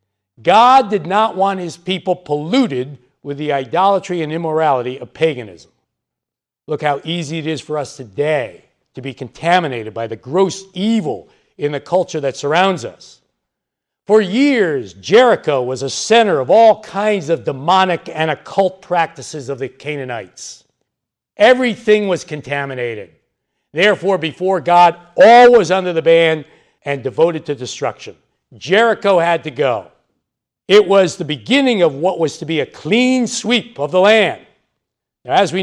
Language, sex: English, male